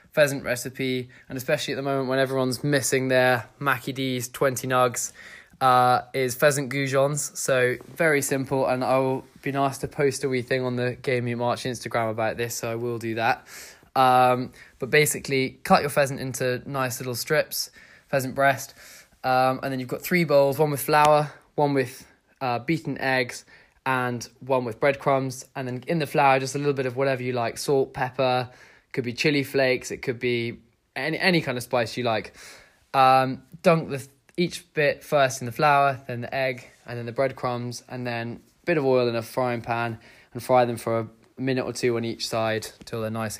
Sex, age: male, 20-39